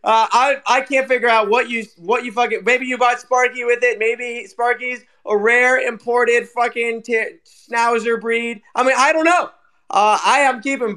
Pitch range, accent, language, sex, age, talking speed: 190-235 Hz, American, English, male, 20-39, 190 wpm